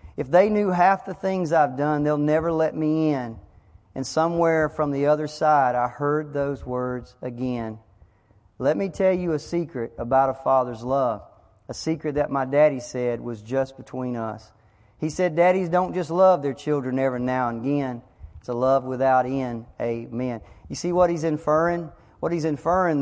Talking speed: 180 wpm